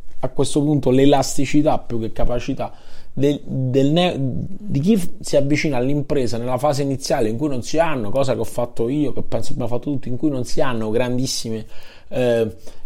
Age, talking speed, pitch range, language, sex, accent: 30-49, 185 wpm, 115-135 Hz, Italian, male, native